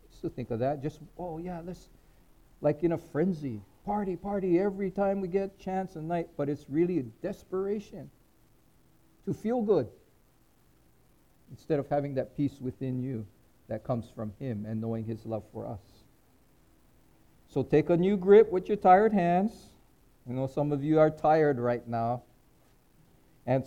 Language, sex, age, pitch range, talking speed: English, male, 50-69, 120-165 Hz, 170 wpm